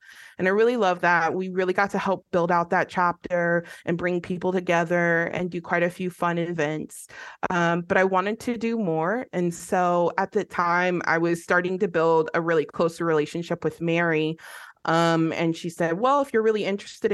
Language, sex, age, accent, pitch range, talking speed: English, female, 20-39, American, 165-195 Hz, 200 wpm